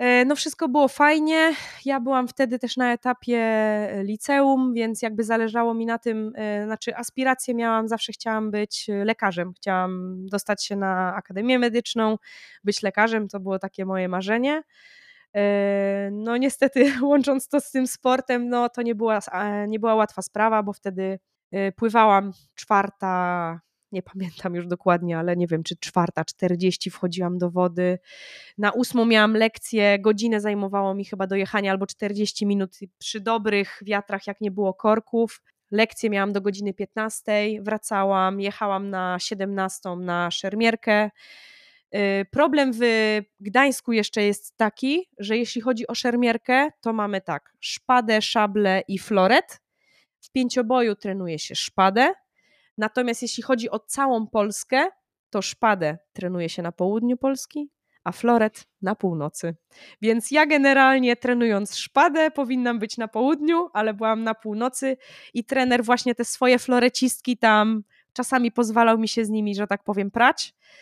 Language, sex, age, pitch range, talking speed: Polish, female, 20-39, 195-245 Hz, 145 wpm